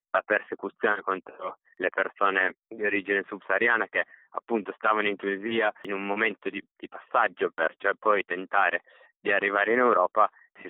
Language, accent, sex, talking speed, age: Italian, native, male, 150 wpm, 20-39